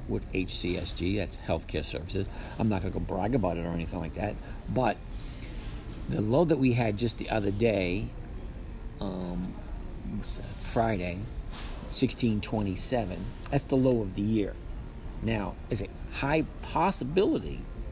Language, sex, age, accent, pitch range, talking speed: English, male, 50-69, American, 95-120 Hz, 135 wpm